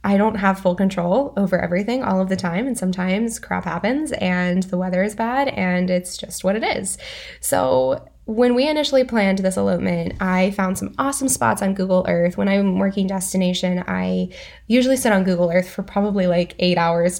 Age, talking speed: 10-29, 195 wpm